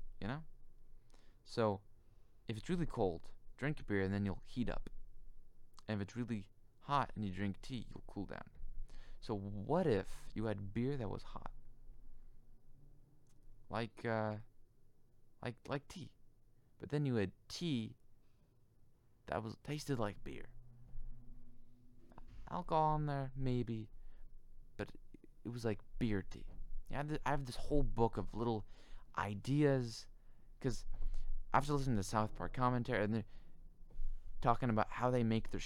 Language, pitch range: English, 100-125 Hz